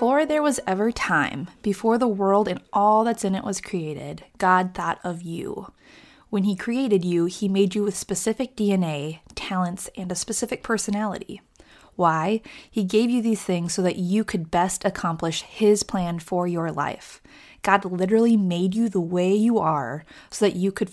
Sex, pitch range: female, 180-220 Hz